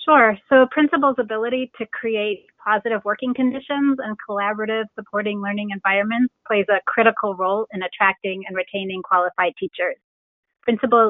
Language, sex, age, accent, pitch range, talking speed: English, female, 30-49, American, 195-230 Hz, 135 wpm